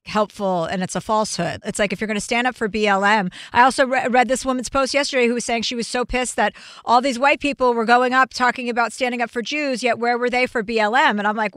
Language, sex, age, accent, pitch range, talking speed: English, female, 40-59, American, 225-290 Hz, 270 wpm